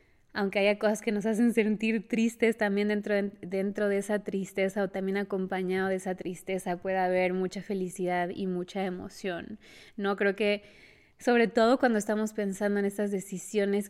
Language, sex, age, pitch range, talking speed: Spanish, female, 20-39, 190-215 Hz, 170 wpm